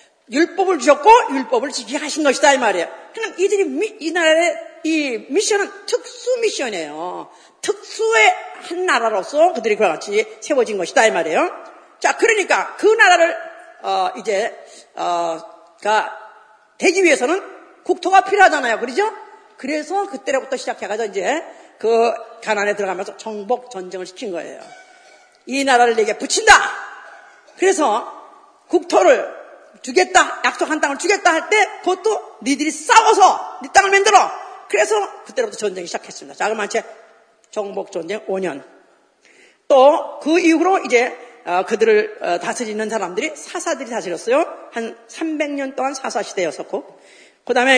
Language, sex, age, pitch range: Korean, female, 40-59, 230-380 Hz